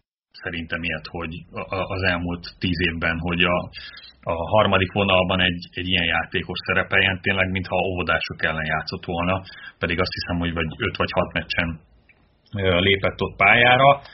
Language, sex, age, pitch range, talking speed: Hungarian, male, 30-49, 85-105 Hz, 150 wpm